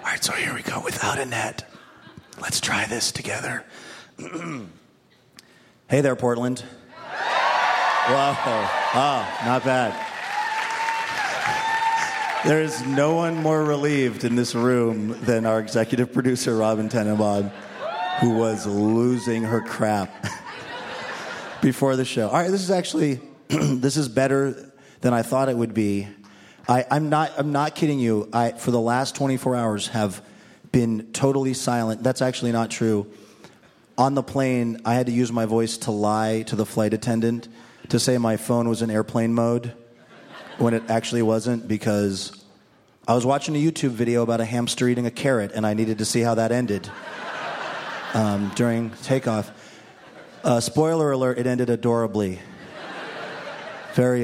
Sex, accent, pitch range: male, American, 110-135 Hz